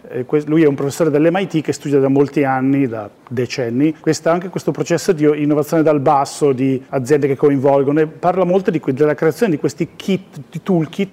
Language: Italian